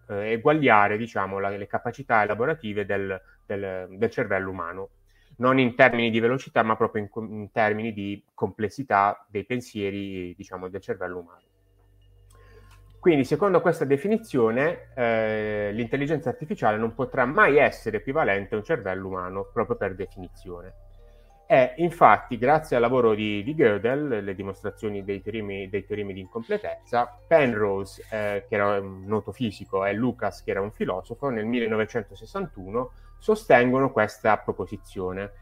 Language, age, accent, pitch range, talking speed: Italian, 30-49, native, 100-130 Hz, 130 wpm